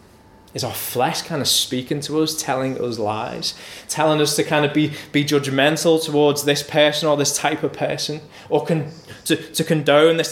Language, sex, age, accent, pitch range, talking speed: English, male, 20-39, British, 115-155 Hz, 190 wpm